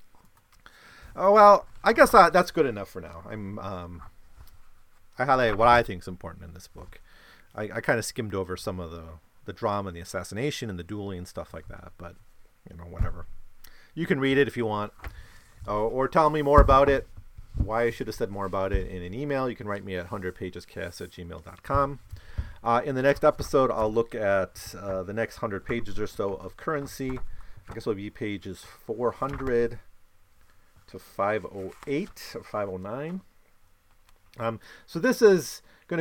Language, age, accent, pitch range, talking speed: English, 40-59, American, 90-120 Hz, 195 wpm